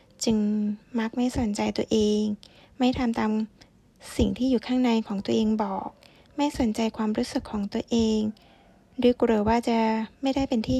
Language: Thai